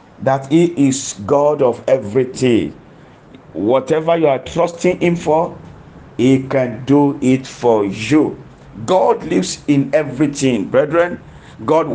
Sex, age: male, 50-69